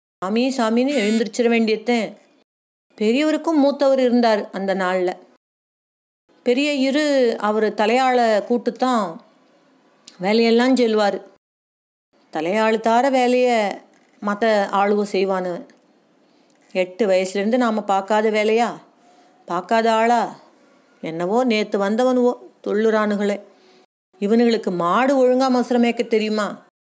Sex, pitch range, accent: female, 205-255 Hz, native